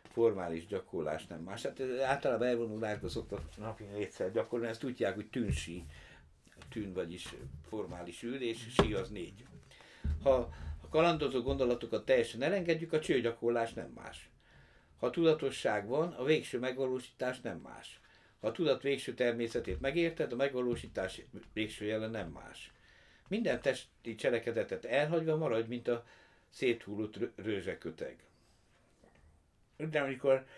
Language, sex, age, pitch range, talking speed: Hungarian, male, 60-79, 110-140 Hz, 130 wpm